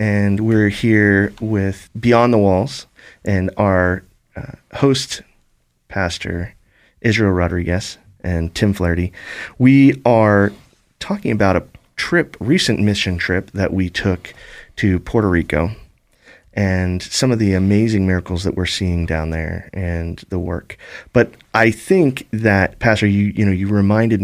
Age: 30-49